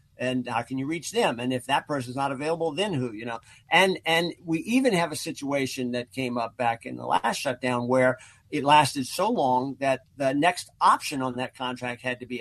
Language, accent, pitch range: English, American, 125-155 Hz